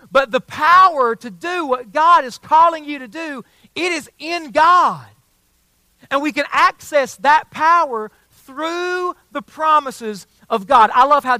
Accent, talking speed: American, 160 wpm